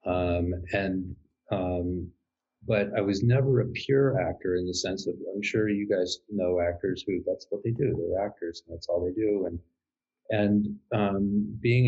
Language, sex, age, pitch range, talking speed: English, male, 40-59, 90-110 Hz, 180 wpm